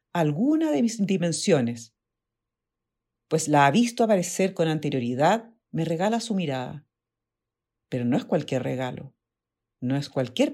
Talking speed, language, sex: 130 wpm, Spanish, female